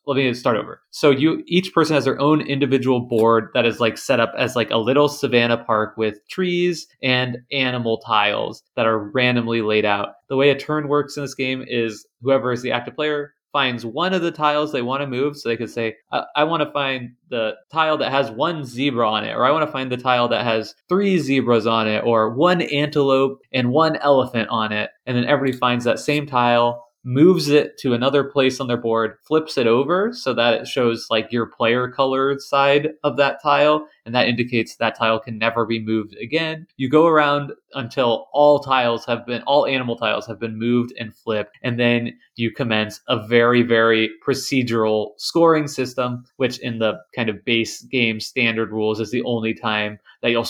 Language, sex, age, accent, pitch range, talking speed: English, male, 20-39, American, 115-140 Hz, 210 wpm